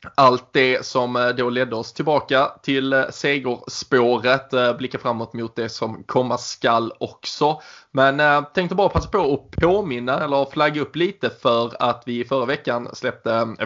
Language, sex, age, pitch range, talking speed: Swedish, male, 20-39, 125-150 Hz, 150 wpm